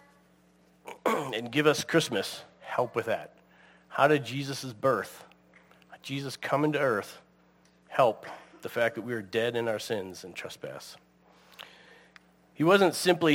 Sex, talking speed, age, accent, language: male, 135 wpm, 40-59, American, English